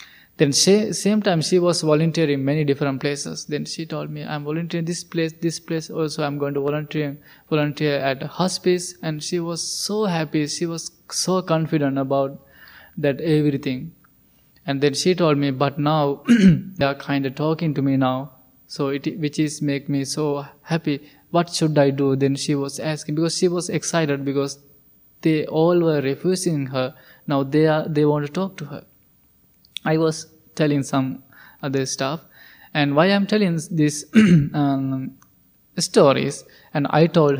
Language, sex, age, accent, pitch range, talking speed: English, male, 20-39, Indian, 140-165 Hz, 170 wpm